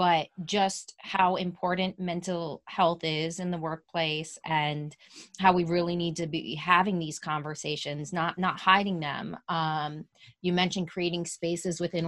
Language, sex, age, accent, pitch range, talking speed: English, female, 20-39, American, 155-185 Hz, 150 wpm